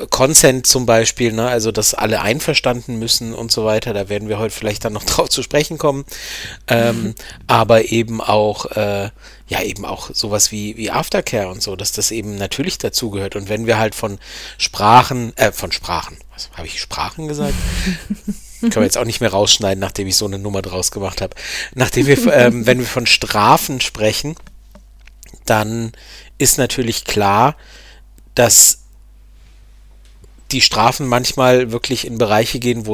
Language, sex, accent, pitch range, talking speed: German, male, German, 105-125 Hz, 170 wpm